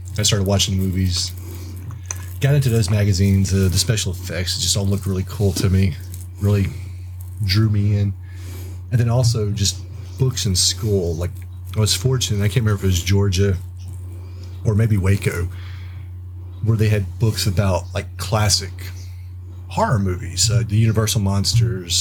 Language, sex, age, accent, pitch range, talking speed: English, male, 30-49, American, 90-105 Hz, 160 wpm